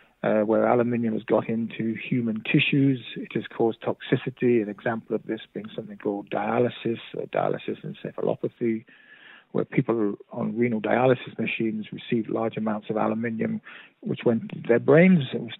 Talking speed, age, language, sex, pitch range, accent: 155 wpm, 50-69, English, male, 115-170 Hz, British